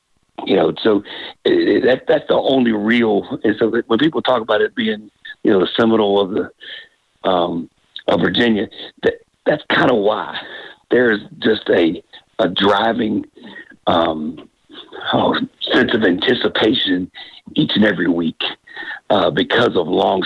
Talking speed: 140 wpm